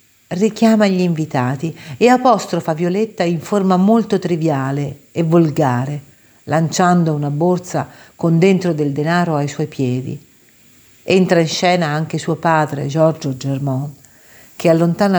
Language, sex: Italian, female